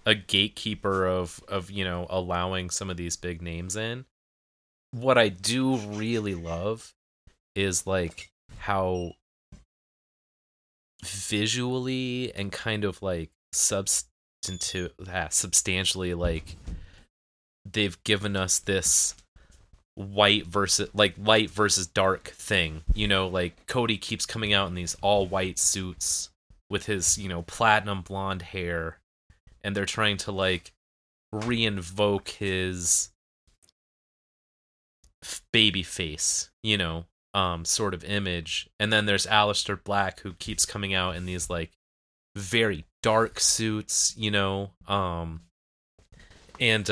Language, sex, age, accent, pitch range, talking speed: English, male, 30-49, American, 85-105 Hz, 120 wpm